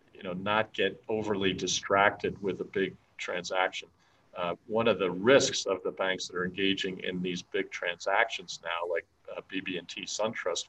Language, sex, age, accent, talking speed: English, male, 50-69, American, 170 wpm